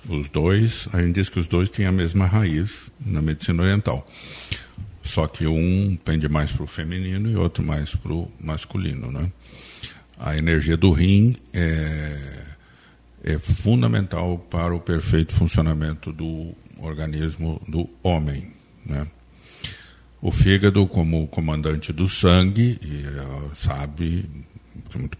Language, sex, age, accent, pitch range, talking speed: Portuguese, male, 60-79, Brazilian, 75-90 Hz, 125 wpm